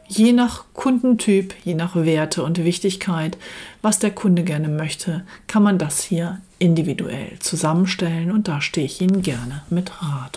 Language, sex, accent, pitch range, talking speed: German, female, German, 155-190 Hz, 155 wpm